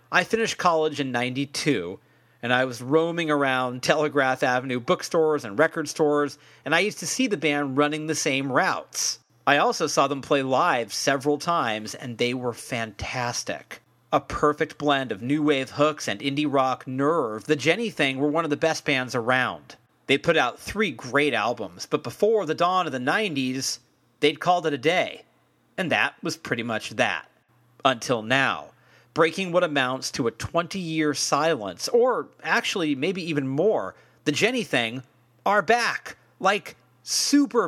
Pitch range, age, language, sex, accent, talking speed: 130-160 Hz, 40-59, English, male, American, 165 wpm